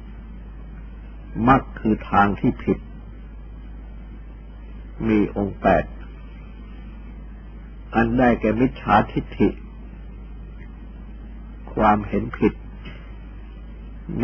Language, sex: Thai, male